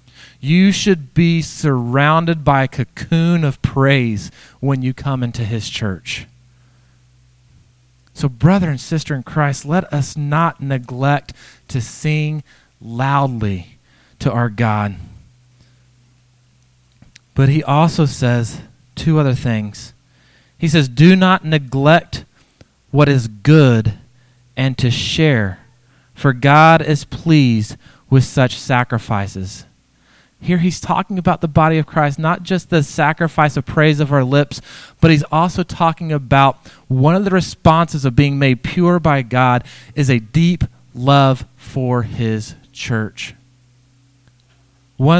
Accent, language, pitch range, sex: American, English, 125-155 Hz, male